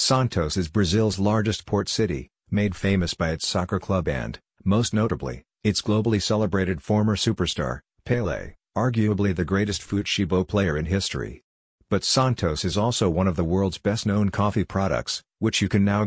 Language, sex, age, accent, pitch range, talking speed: English, male, 50-69, American, 90-105 Hz, 160 wpm